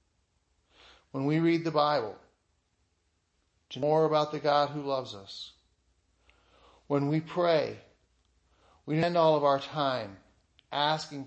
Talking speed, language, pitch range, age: 130 wpm, English, 95-160 Hz, 50-69